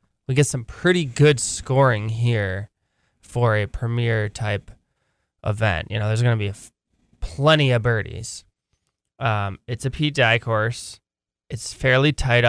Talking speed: 155 wpm